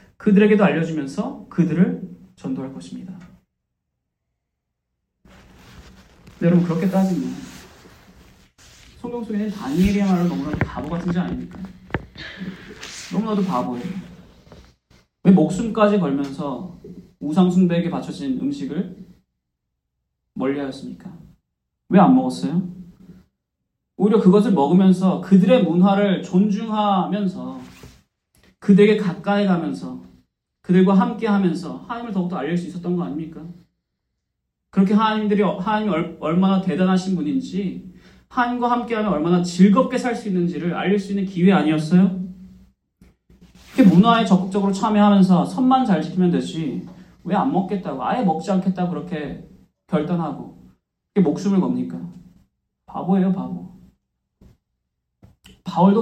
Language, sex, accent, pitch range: Korean, male, native, 160-200 Hz